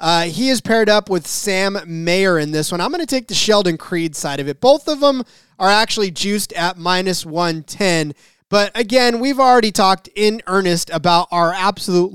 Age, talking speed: 30-49, 200 wpm